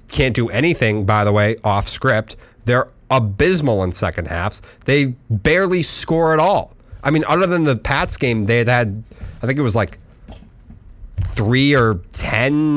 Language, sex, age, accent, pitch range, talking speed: English, male, 30-49, American, 105-135 Hz, 165 wpm